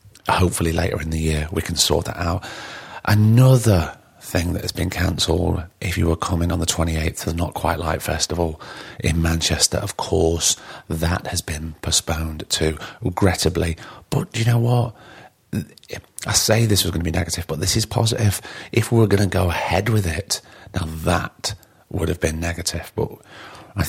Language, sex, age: English, male, 30-49